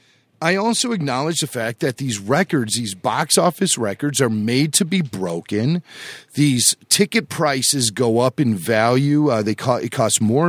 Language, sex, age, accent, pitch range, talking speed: English, male, 40-59, American, 120-155 Hz, 160 wpm